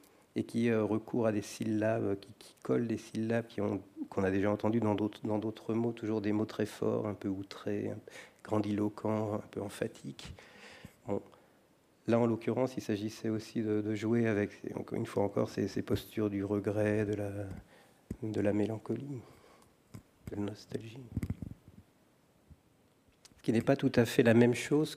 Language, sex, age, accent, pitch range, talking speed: French, male, 40-59, French, 105-120 Hz, 170 wpm